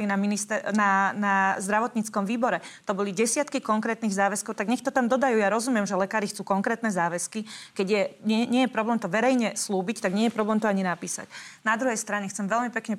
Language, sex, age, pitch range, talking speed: Slovak, female, 30-49, 200-225 Hz, 210 wpm